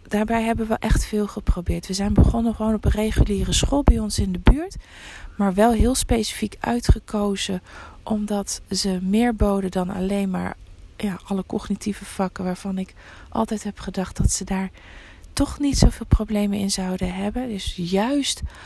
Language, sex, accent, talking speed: Dutch, female, Dutch, 165 wpm